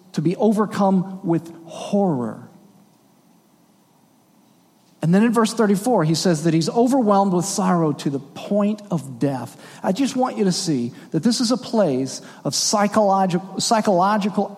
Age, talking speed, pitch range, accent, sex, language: 40-59, 145 wpm, 160-225 Hz, American, male, English